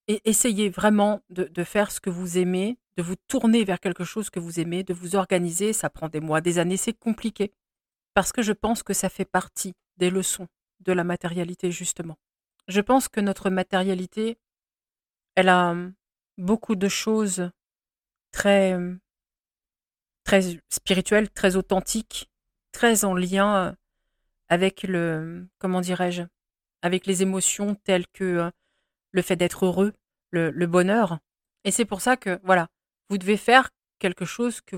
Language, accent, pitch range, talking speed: French, French, 180-215 Hz, 155 wpm